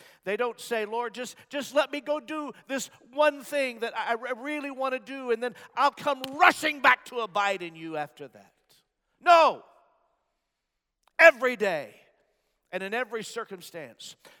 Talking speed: 160 wpm